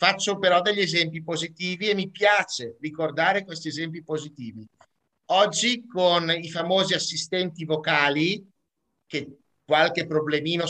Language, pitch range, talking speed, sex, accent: Italian, 150-190 Hz, 120 wpm, male, native